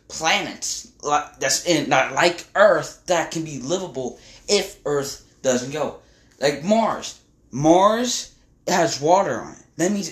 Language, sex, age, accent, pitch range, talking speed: English, male, 20-39, American, 130-175 Hz, 125 wpm